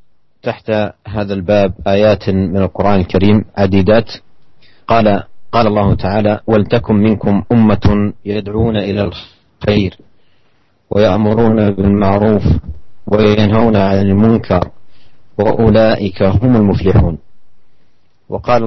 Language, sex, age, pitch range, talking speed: Indonesian, male, 40-59, 100-110 Hz, 85 wpm